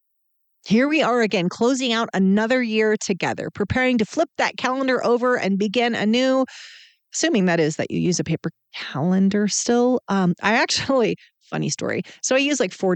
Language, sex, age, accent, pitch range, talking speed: English, female, 30-49, American, 175-220 Hz, 180 wpm